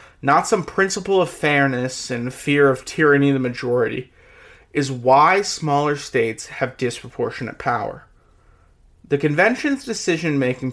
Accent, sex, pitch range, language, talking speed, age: American, male, 130-165 Hz, English, 125 wpm, 30-49